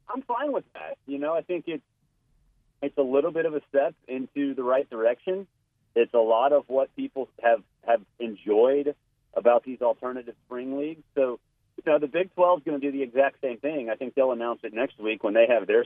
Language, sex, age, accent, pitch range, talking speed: English, male, 40-59, American, 115-150 Hz, 225 wpm